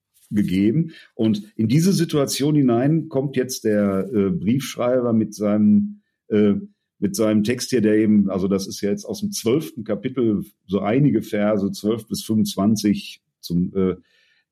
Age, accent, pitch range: 50-69, German, 105-155 Hz